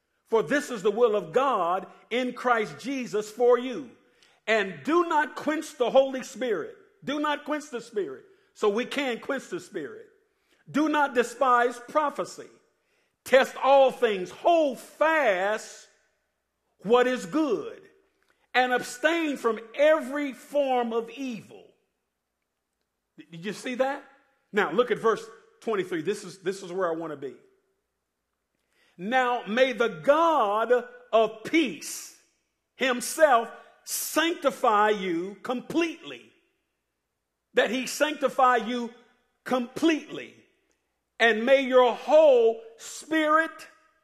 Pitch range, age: 225-300 Hz, 50-69